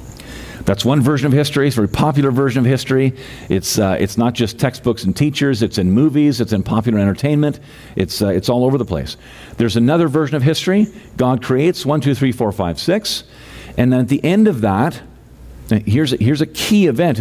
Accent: American